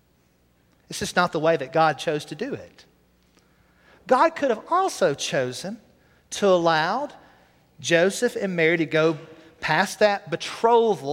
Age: 40-59